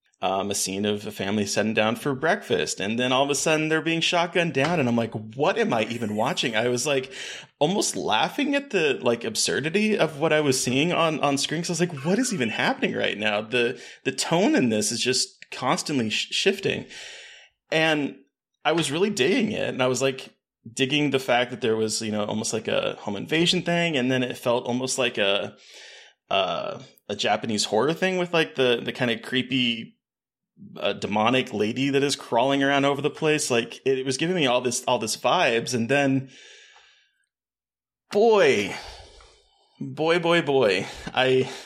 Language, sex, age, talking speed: English, male, 20-39, 195 wpm